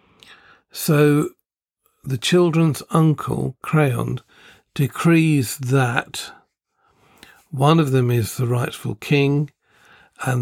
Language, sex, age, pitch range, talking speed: English, male, 50-69, 125-150 Hz, 85 wpm